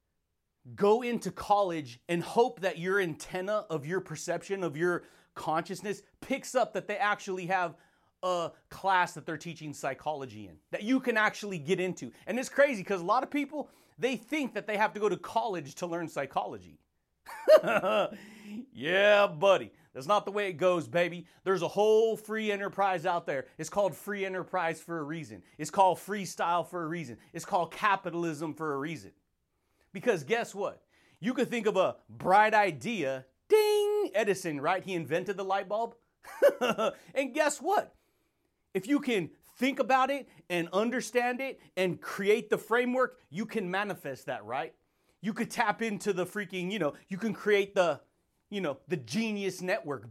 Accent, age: American, 30-49